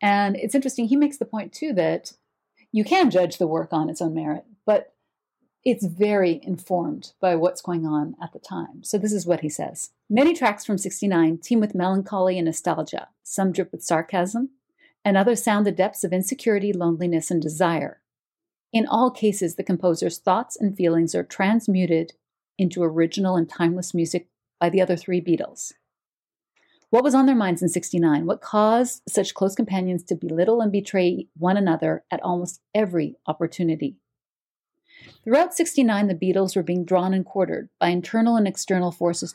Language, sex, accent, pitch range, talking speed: English, female, American, 175-220 Hz, 175 wpm